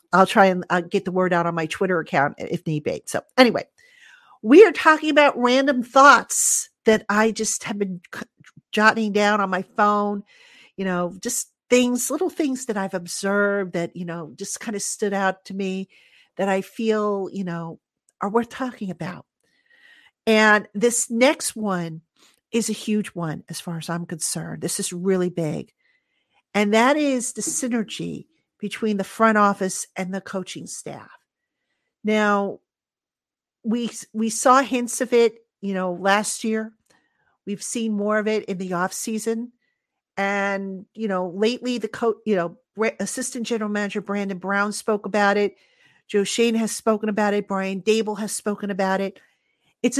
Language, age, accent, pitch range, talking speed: English, 50-69, American, 190-230 Hz, 170 wpm